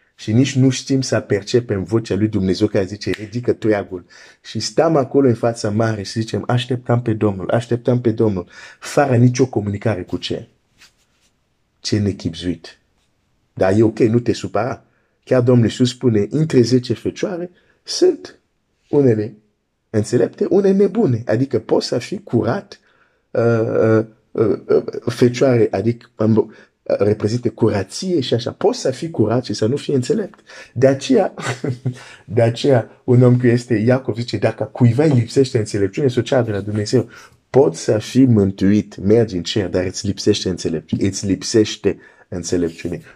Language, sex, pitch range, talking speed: Romanian, male, 105-130 Hz, 155 wpm